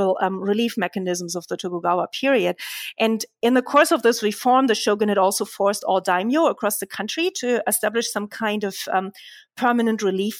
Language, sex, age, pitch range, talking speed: English, female, 30-49, 200-260 Hz, 185 wpm